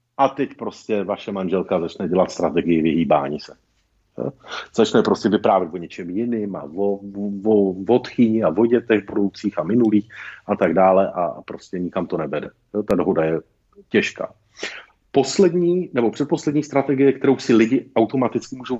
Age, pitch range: 50-69, 110-140 Hz